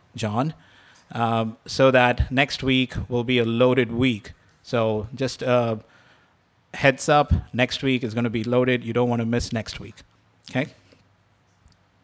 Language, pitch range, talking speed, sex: English, 115-140 Hz, 160 wpm, male